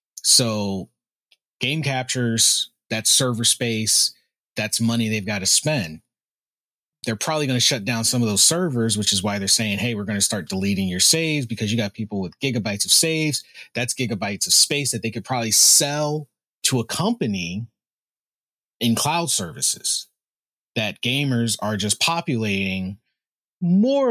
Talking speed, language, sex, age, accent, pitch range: 160 wpm, English, male, 30-49, American, 105-140 Hz